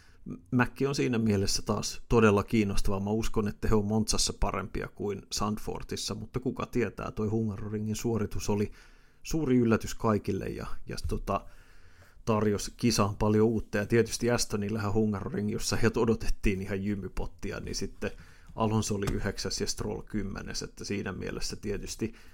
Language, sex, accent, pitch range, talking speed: Finnish, male, native, 95-110 Hz, 140 wpm